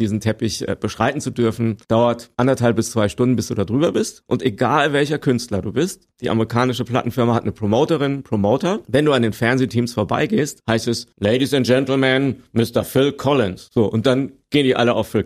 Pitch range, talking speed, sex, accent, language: 115-145 Hz, 195 wpm, male, German, German